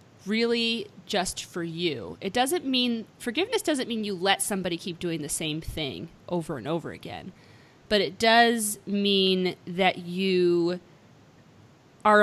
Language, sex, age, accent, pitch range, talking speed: English, female, 30-49, American, 175-225 Hz, 140 wpm